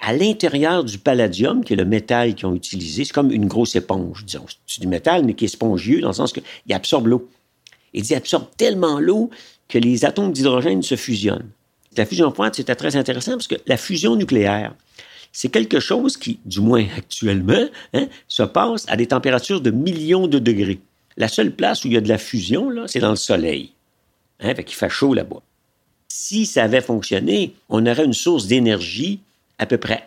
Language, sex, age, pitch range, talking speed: French, male, 50-69, 105-170 Hz, 205 wpm